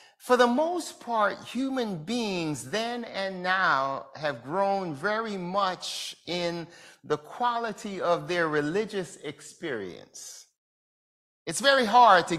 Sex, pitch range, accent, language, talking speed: male, 185-265 Hz, American, English, 115 wpm